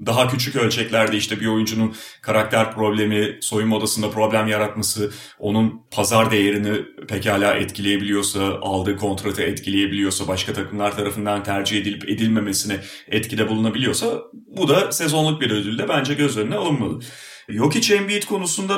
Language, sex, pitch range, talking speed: Turkish, male, 100-140 Hz, 130 wpm